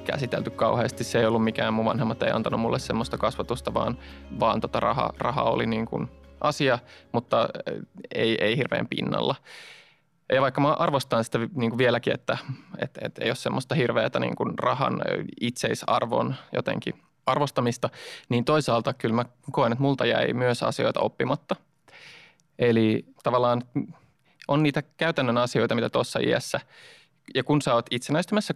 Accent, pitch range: native, 115-140 Hz